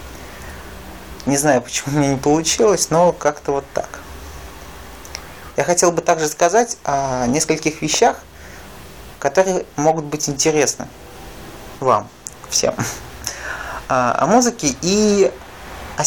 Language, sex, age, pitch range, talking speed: Russian, male, 30-49, 135-175 Hz, 105 wpm